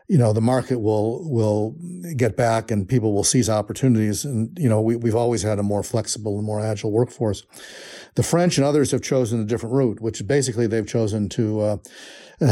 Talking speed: 200 wpm